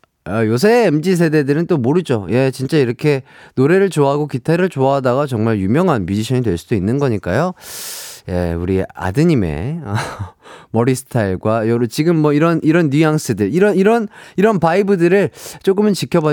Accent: native